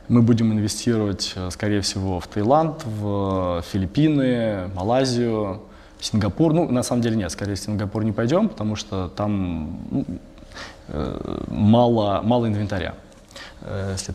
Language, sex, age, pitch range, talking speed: Russian, male, 20-39, 100-125 Hz, 125 wpm